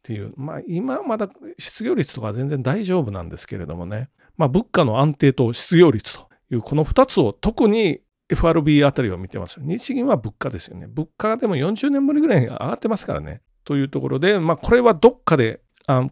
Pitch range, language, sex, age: 120-180 Hz, Japanese, male, 40-59